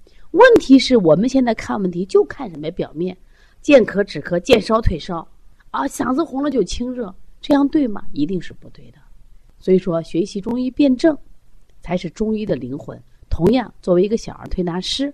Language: Chinese